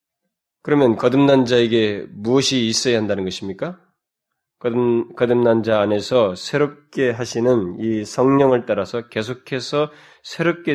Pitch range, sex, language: 110-150 Hz, male, Korean